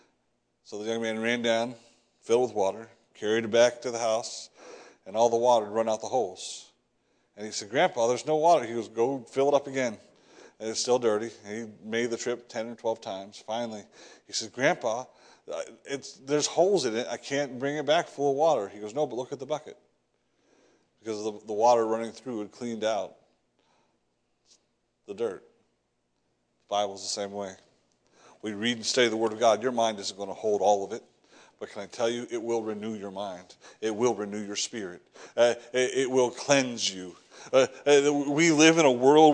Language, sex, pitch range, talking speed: English, male, 115-150 Hz, 205 wpm